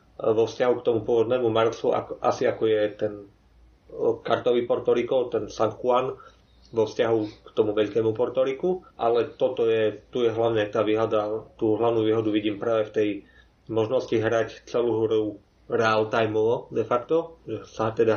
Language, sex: Slovak, male